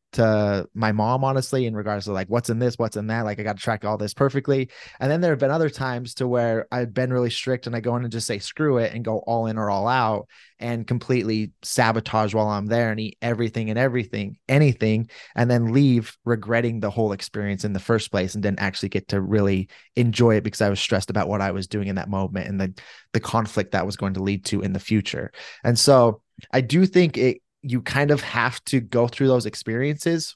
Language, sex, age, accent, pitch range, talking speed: English, male, 20-39, American, 105-130 Hz, 240 wpm